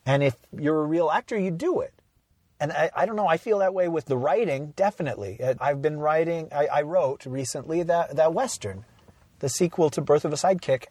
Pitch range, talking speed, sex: 125-175 Hz, 215 wpm, male